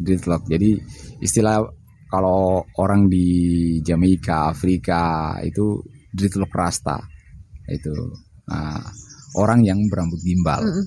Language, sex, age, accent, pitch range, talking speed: English, male, 20-39, Indonesian, 85-120 Hz, 95 wpm